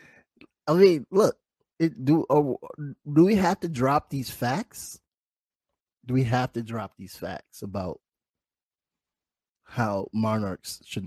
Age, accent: 20-39, American